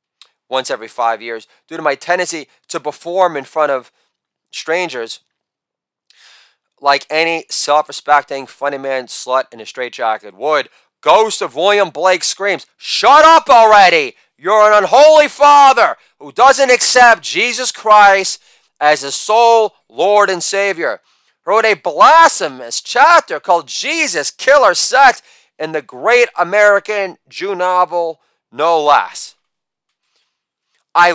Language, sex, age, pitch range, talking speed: English, male, 30-49, 150-240 Hz, 125 wpm